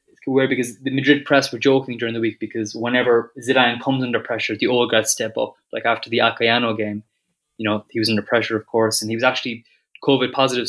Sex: male